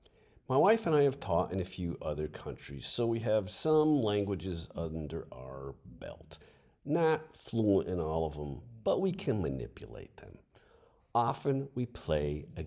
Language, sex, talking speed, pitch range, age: English, male, 160 wpm, 80-130 Hz, 50-69